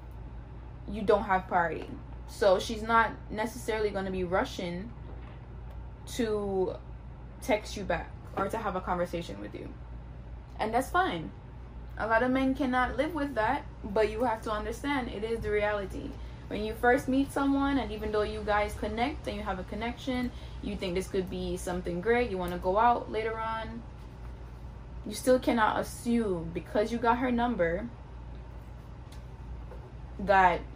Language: English